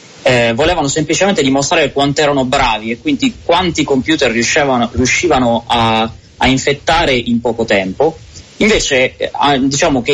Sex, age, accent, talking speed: male, 30-49, native, 135 wpm